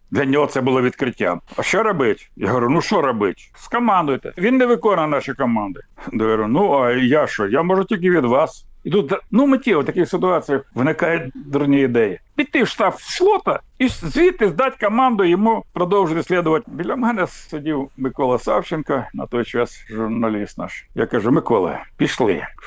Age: 60-79